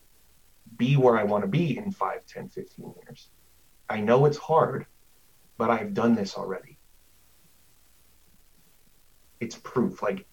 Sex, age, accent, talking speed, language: male, 30-49, American, 135 wpm, English